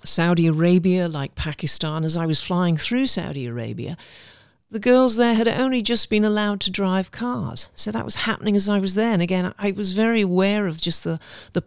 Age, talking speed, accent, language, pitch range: 50-69, 205 wpm, British, English, 160-230 Hz